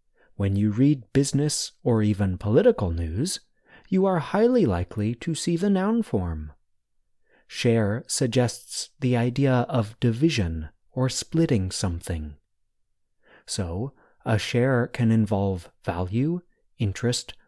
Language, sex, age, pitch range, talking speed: English, male, 30-49, 100-140 Hz, 115 wpm